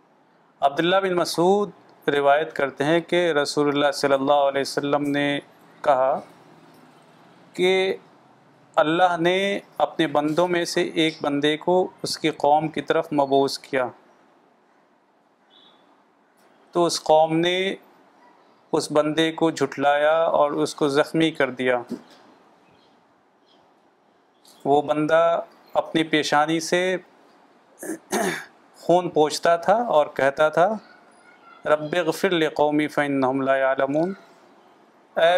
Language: Urdu